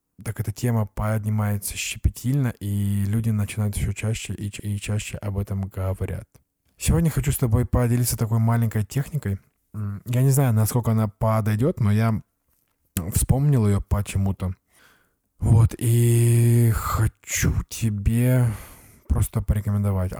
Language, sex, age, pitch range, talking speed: Russian, male, 20-39, 100-115 Hz, 120 wpm